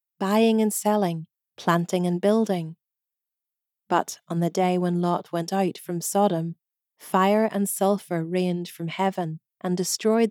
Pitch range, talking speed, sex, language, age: 170-205 Hz, 140 wpm, female, English, 40-59